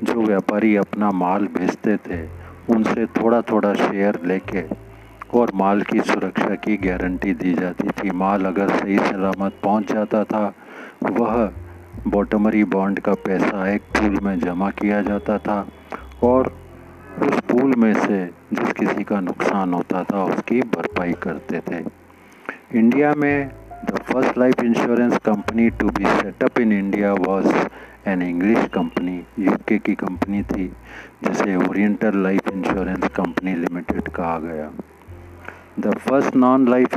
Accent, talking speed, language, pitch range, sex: native, 140 wpm, Hindi, 95-115 Hz, male